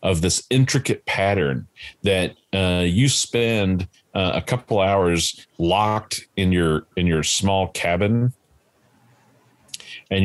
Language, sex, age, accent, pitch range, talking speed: English, male, 40-59, American, 85-105 Hz, 115 wpm